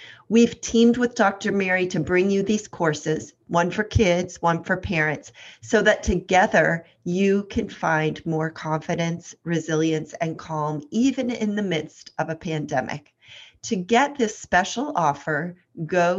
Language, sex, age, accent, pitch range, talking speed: English, female, 40-59, American, 155-195 Hz, 150 wpm